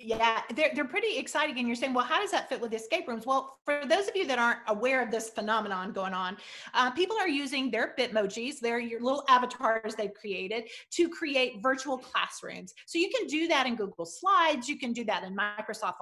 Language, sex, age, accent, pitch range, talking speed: English, female, 40-59, American, 225-310 Hz, 220 wpm